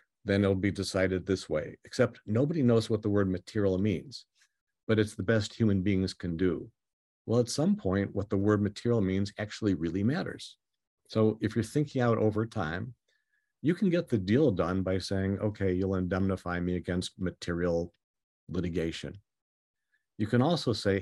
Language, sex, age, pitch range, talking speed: English, male, 50-69, 95-120 Hz, 170 wpm